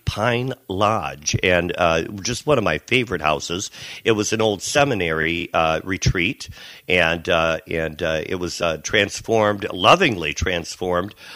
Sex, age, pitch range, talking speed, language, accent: male, 50-69, 85-110 Hz, 145 wpm, English, American